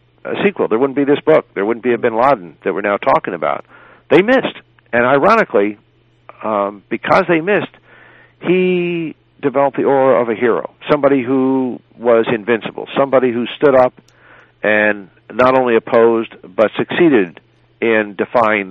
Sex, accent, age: male, American, 60-79